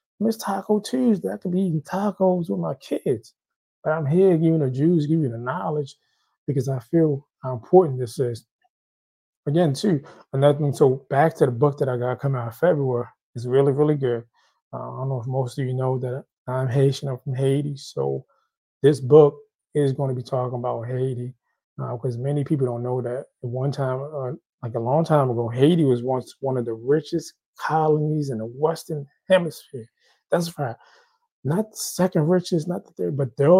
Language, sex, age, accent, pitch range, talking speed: English, male, 20-39, American, 125-150 Hz, 195 wpm